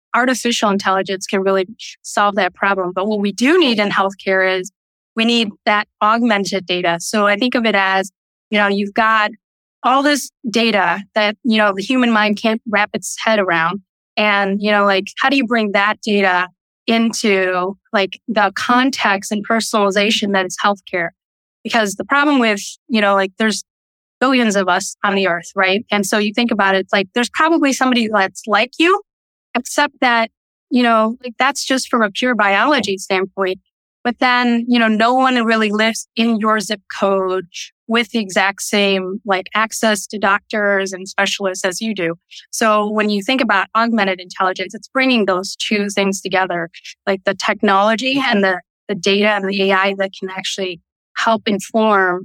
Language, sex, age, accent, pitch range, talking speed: English, female, 20-39, American, 195-230 Hz, 180 wpm